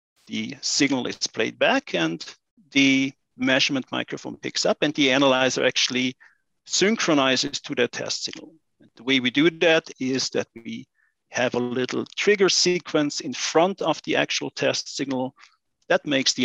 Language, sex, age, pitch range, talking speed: English, male, 50-69, 120-160 Hz, 160 wpm